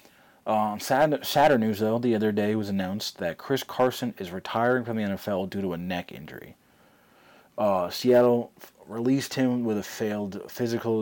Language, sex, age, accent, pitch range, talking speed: English, male, 30-49, American, 95-115 Hz, 175 wpm